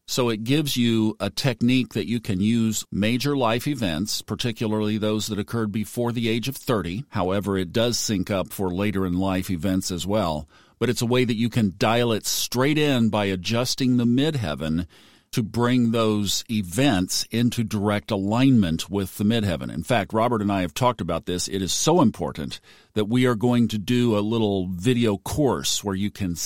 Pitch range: 105-130 Hz